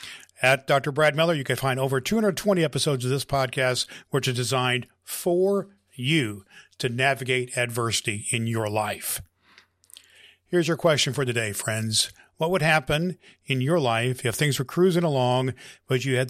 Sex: male